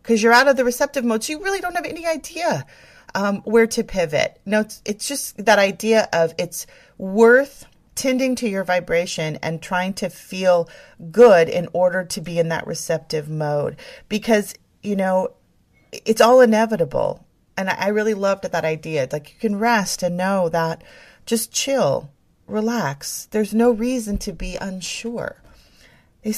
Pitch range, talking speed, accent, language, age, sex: 165-225 Hz, 170 wpm, American, English, 30-49, female